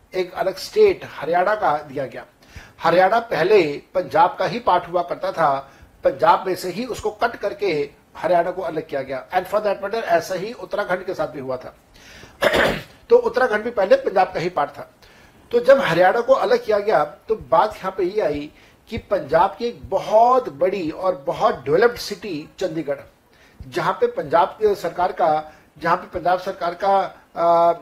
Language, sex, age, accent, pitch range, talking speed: Hindi, male, 60-79, native, 175-235 Hz, 170 wpm